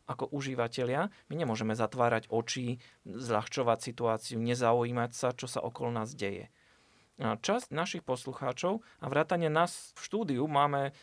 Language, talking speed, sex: Slovak, 135 wpm, male